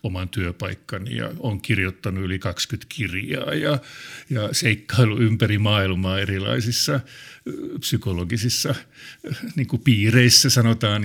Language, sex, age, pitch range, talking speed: Finnish, male, 50-69, 95-125 Hz, 90 wpm